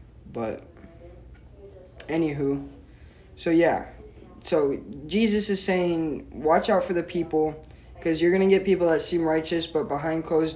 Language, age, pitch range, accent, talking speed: English, 20-39, 140-170 Hz, American, 140 wpm